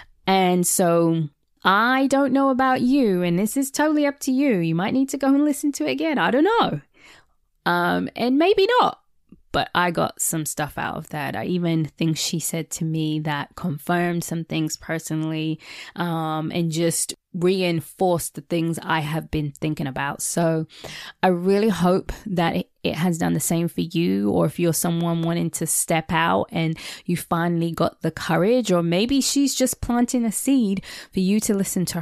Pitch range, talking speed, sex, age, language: 160-215 Hz, 185 wpm, female, 20-39, English